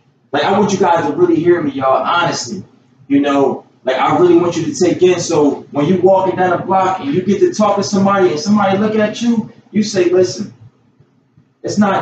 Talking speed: 225 wpm